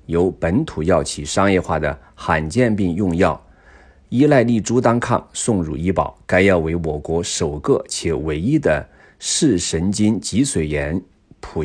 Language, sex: Chinese, male